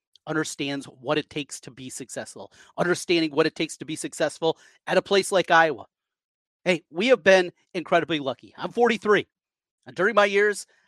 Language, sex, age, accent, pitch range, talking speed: English, male, 30-49, American, 135-175 Hz, 170 wpm